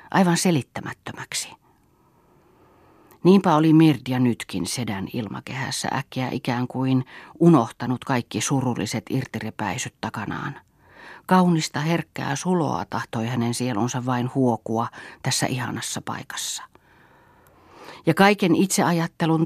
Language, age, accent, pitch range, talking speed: Finnish, 40-59, native, 120-160 Hz, 95 wpm